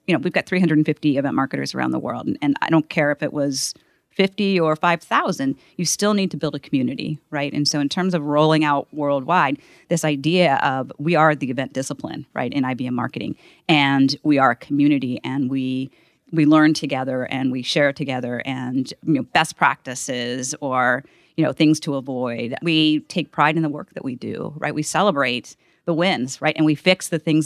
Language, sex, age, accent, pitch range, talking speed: English, female, 40-59, American, 135-160 Hz, 210 wpm